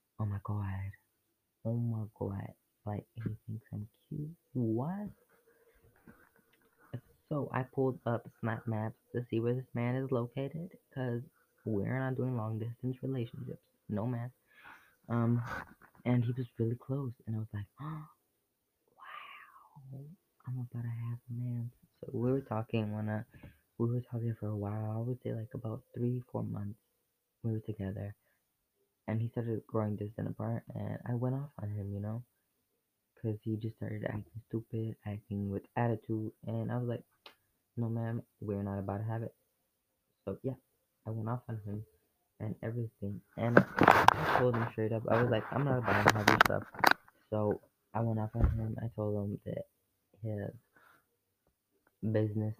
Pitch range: 105-125 Hz